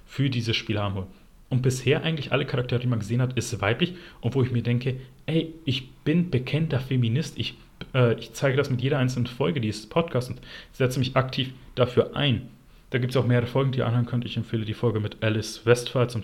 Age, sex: 30-49, male